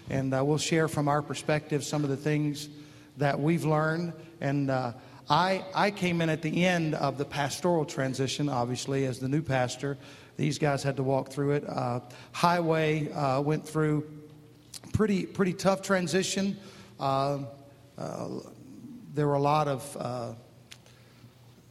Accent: American